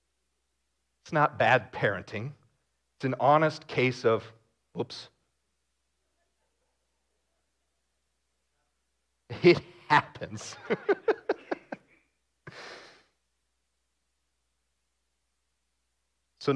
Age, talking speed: 40-59, 45 wpm